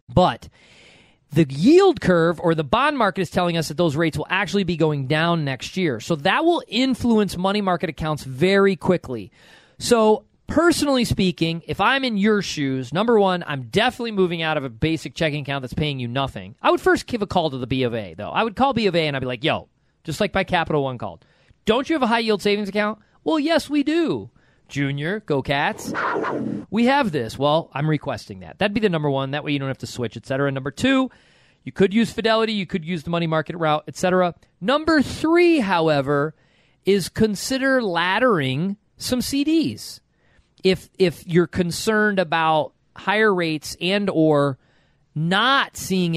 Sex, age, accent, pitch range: male, 40-59, American, 150-215 Hz